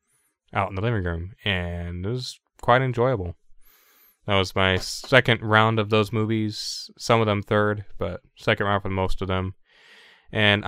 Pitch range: 100-125 Hz